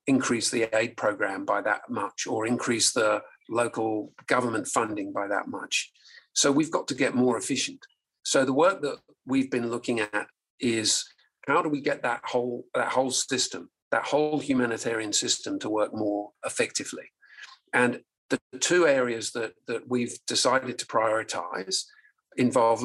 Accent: British